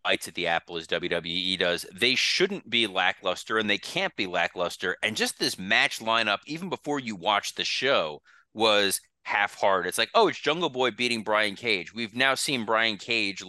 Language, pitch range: English, 100-125 Hz